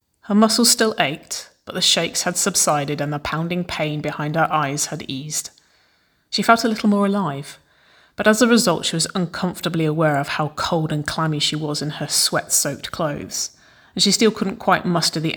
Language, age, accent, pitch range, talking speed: English, 30-49, British, 155-190 Hz, 195 wpm